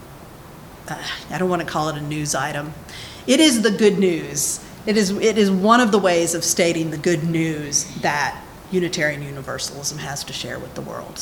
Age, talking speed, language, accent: 40-59, 200 wpm, English, American